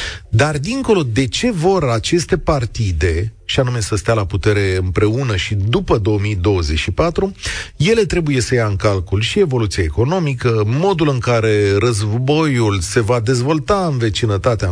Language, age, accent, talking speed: Romanian, 40-59, native, 145 wpm